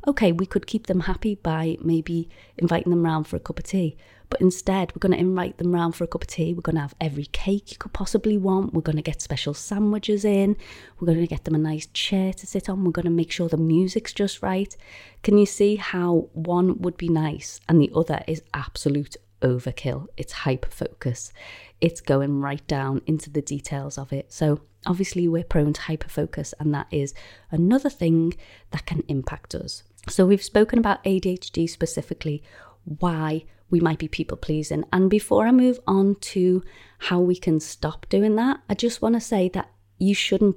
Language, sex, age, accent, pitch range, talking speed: English, female, 30-49, British, 155-190 Hz, 205 wpm